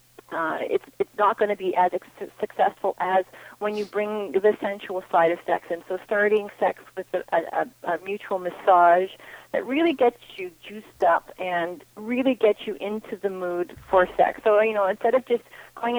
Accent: American